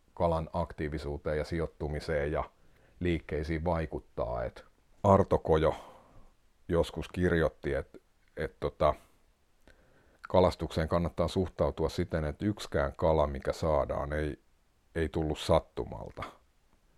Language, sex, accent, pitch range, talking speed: Finnish, male, native, 80-90 Hz, 100 wpm